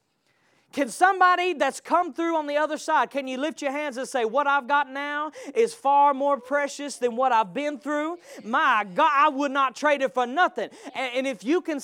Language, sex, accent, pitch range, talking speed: English, male, American, 260-335 Hz, 215 wpm